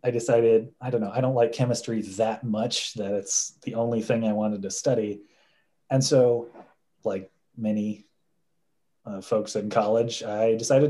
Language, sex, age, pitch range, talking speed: English, male, 30-49, 110-140 Hz, 165 wpm